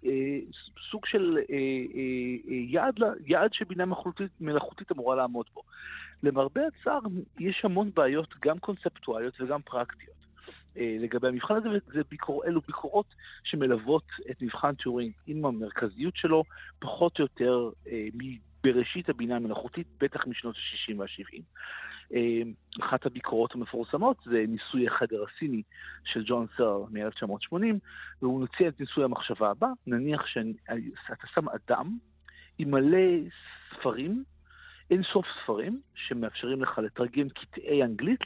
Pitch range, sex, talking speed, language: 125-200 Hz, male, 115 wpm, Hebrew